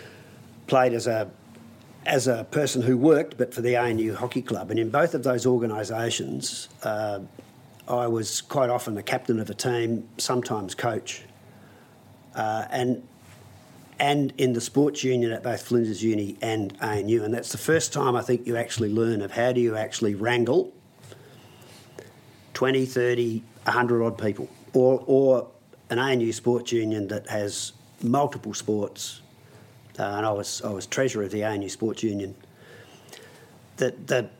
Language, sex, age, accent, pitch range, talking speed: English, male, 50-69, Australian, 115-130 Hz, 155 wpm